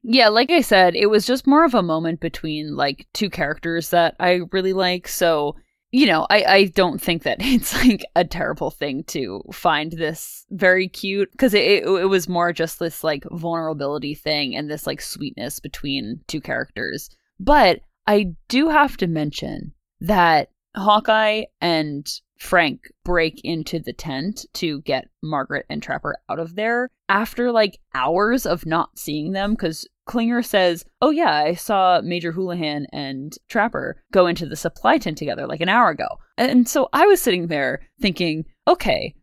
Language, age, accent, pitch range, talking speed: English, 20-39, American, 160-225 Hz, 170 wpm